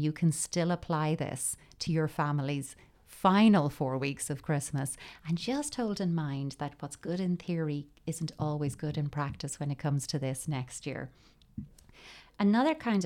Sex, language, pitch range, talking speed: female, English, 150-175 Hz, 170 wpm